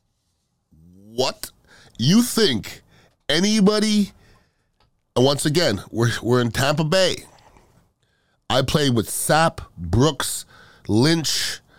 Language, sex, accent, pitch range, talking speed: English, male, American, 110-160 Hz, 90 wpm